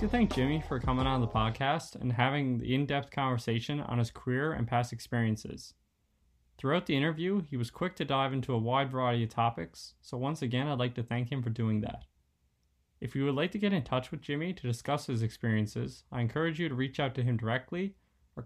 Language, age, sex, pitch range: English, 20-39, male, 115-140 Hz